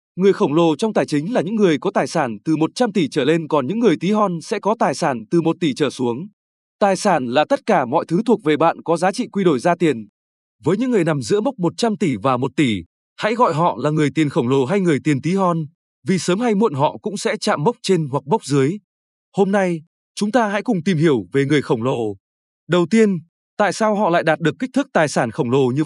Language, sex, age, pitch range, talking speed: Vietnamese, male, 20-39, 155-205 Hz, 260 wpm